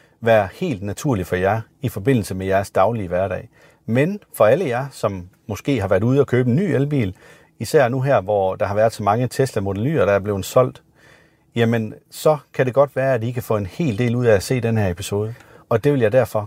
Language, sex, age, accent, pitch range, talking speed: Danish, male, 40-59, native, 105-135 Hz, 235 wpm